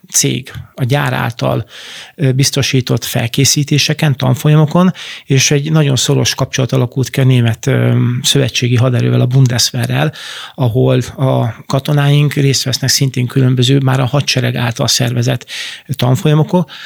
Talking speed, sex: 115 wpm, male